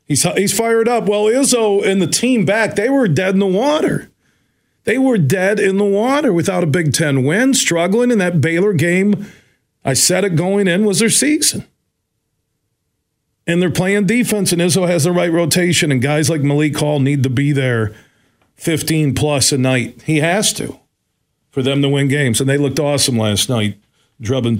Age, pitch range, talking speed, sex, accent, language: 40-59, 120-170 Hz, 190 wpm, male, American, English